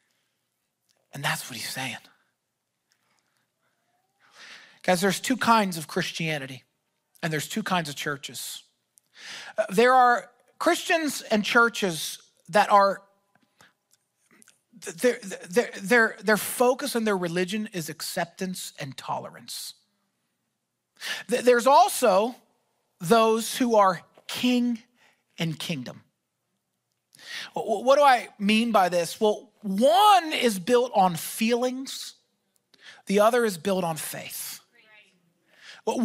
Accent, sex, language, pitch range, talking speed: American, male, English, 190-260 Hz, 100 wpm